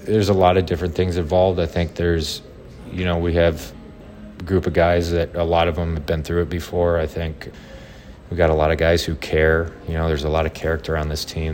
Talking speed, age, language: 250 wpm, 30-49, English